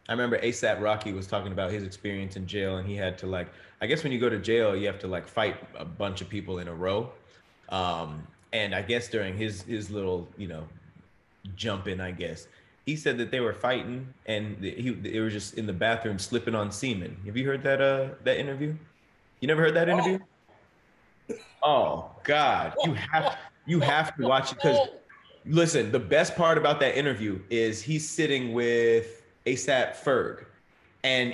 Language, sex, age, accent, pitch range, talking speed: English, male, 30-49, American, 100-150 Hz, 195 wpm